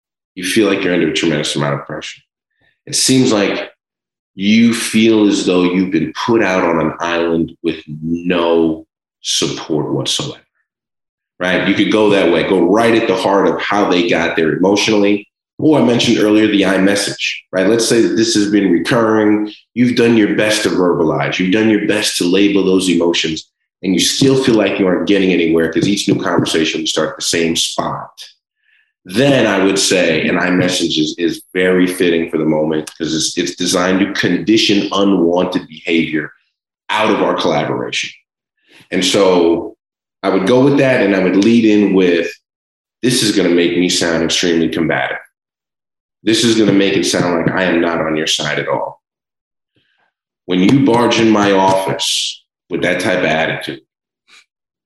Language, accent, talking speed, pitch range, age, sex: English, American, 185 wpm, 85-105 Hz, 30-49, male